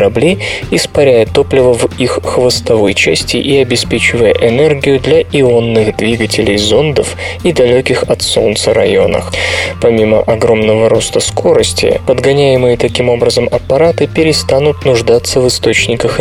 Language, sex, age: Russian, male, 20-39